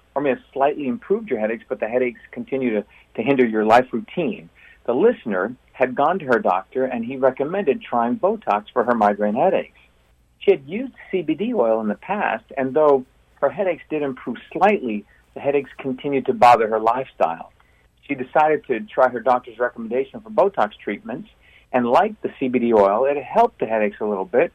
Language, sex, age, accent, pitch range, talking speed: English, male, 50-69, American, 110-145 Hz, 190 wpm